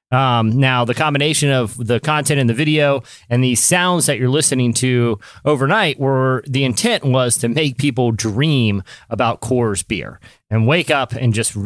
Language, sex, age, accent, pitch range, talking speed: English, male, 30-49, American, 120-150 Hz, 175 wpm